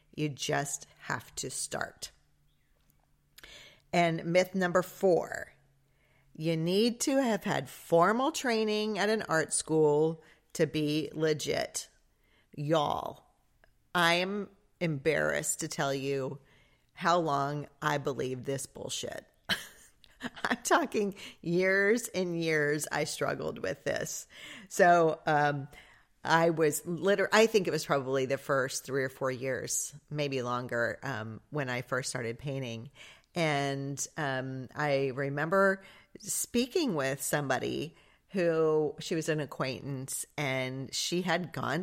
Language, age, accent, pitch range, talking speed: English, 40-59, American, 140-185 Hz, 120 wpm